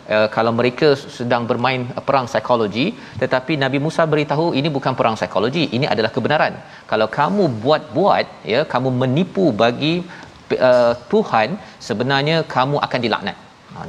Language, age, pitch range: Malayalam, 40-59, 125-155 Hz